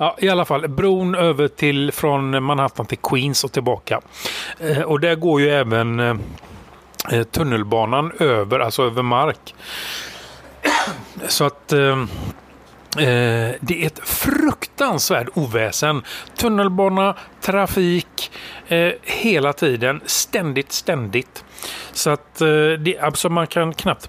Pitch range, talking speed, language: 115-160 Hz, 115 wpm, Swedish